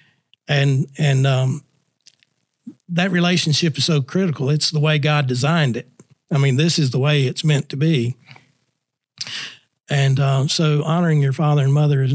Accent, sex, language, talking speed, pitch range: American, male, English, 165 wpm, 135-155 Hz